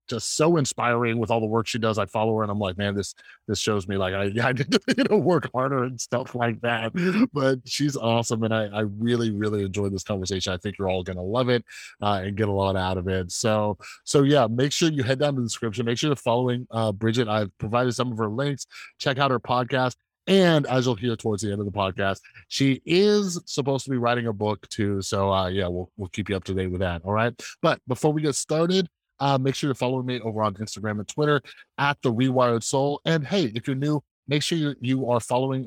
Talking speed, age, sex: 250 wpm, 30-49, male